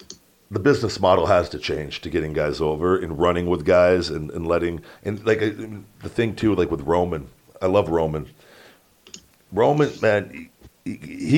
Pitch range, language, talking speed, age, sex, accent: 95-115 Hz, English, 165 wpm, 40-59, male, American